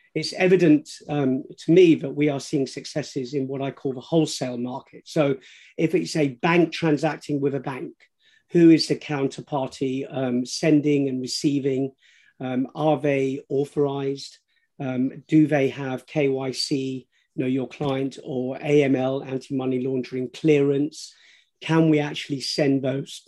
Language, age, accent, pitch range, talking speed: English, 40-59, British, 130-155 Hz, 140 wpm